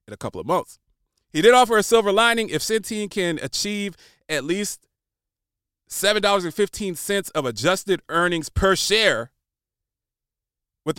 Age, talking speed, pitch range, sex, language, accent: 30-49, 130 wpm, 125-185 Hz, male, English, American